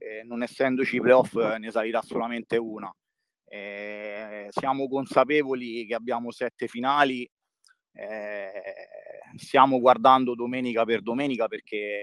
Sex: male